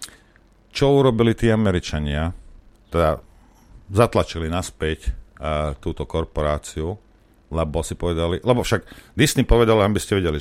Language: Slovak